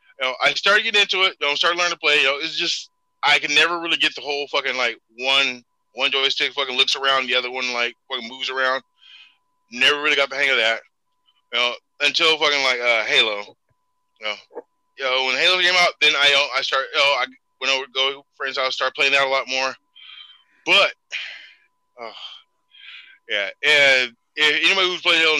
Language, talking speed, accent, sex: English, 215 wpm, American, male